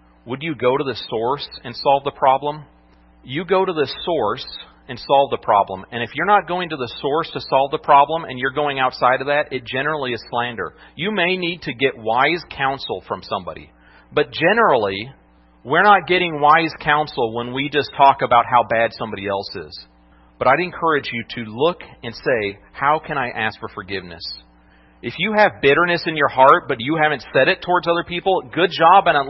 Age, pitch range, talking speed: 40-59, 120-165 Hz, 205 wpm